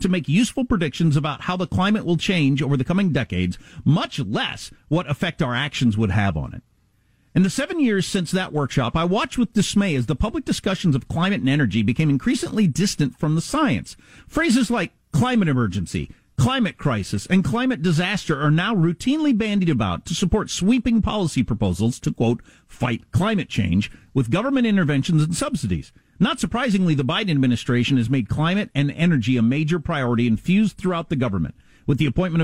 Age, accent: 50-69, American